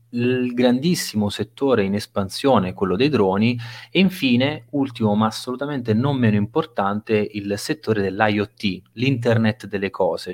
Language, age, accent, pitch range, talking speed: Italian, 30-49, native, 105-120 Hz, 130 wpm